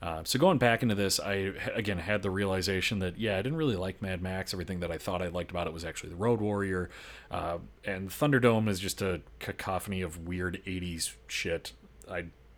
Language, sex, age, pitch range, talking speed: English, male, 30-49, 90-110 Hz, 210 wpm